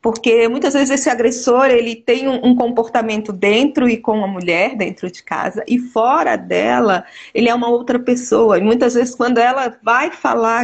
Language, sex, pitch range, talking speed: Portuguese, female, 215-260 Hz, 180 wpm